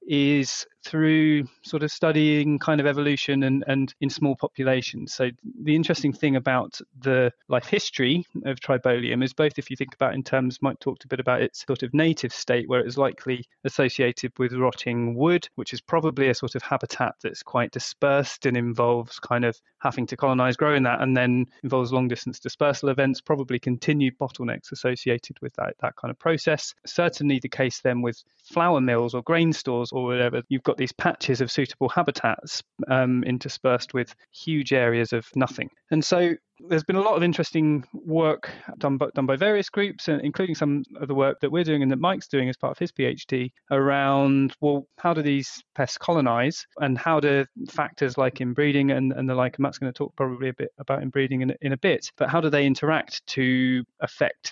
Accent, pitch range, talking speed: British, 130-150 Hz, 200 wpm